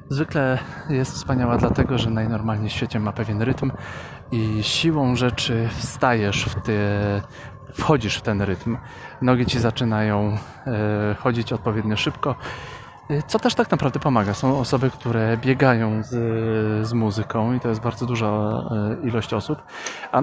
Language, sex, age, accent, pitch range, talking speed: Polish, male, 30-49, native, 110-135 Hz, 140 wpm